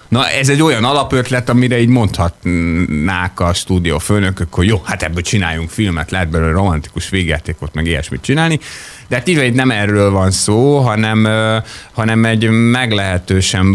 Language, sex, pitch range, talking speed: Hungarian, male, 90-120 Hz, 155 wpm